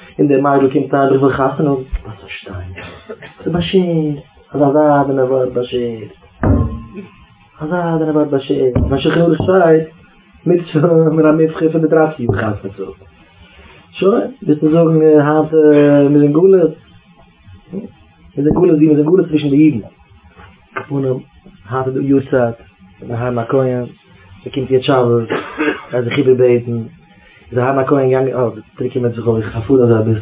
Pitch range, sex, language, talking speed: 110-155 Hz, male, English, 35 wpm